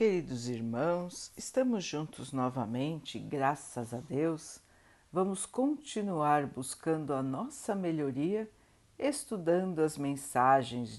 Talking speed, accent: 95 wpm, Brazilian